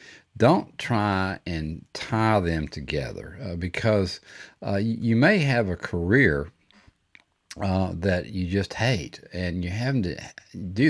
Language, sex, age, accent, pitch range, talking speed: English, male, 50-69, American, 80-105 Hz, 130 wpm